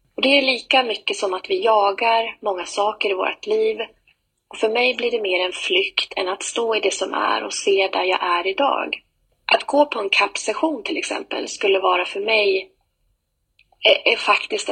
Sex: female